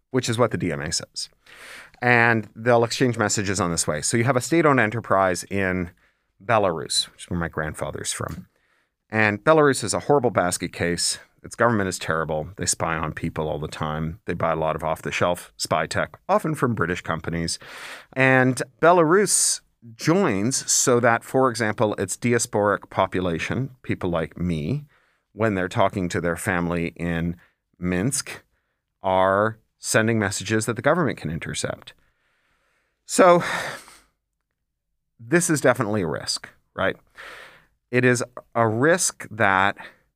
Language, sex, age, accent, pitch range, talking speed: English, male, 40-59, American, 90-125 Hz, 145 wpm